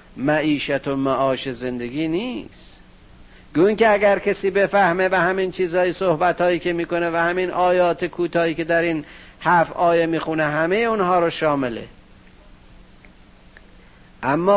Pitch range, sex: 140-185 Hz, male